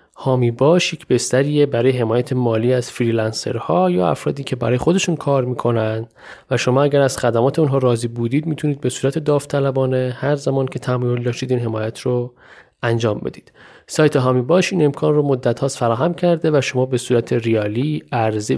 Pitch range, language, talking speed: 120-160 Hz, Persian, 170 wpm